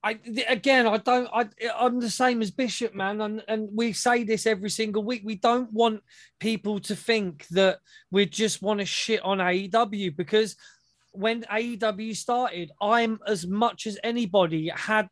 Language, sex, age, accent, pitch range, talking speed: English, male, 20-39, British, 180-215 Hz, 170 wpm